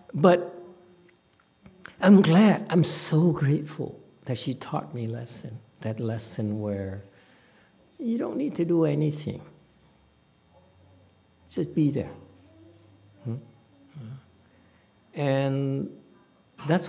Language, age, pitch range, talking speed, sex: English, 60-79, 115-160 Hz, 90 wpm, male